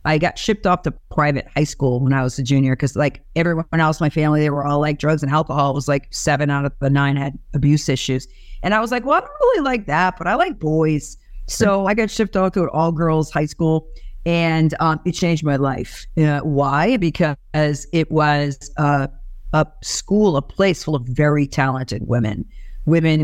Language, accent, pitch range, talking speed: English, American, 145-185 Hz, 215 wpm